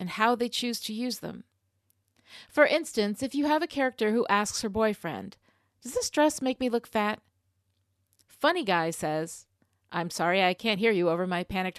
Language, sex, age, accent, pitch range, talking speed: English, female, 40-59, American, 160-250 Hz, 190 wpm